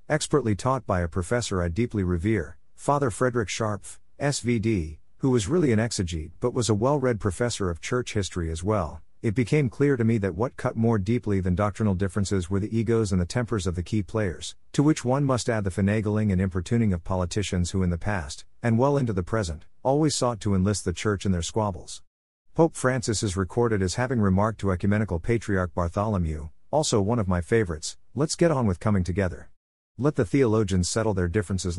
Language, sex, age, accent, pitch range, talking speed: English, male, 50-69, American, 90-115 Hz, 200 wpm